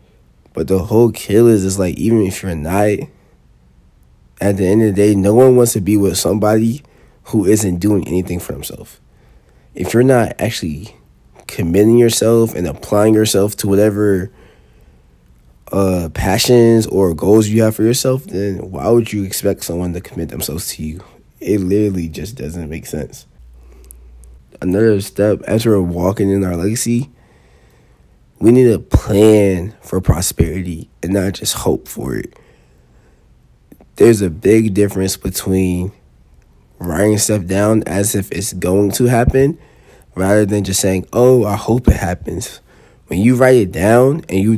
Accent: American